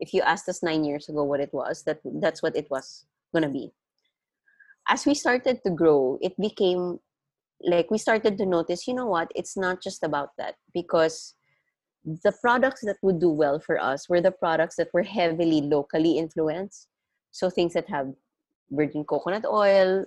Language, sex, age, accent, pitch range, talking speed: English, female, 20-39, Filipino, 160-200 Hz, 185 wpm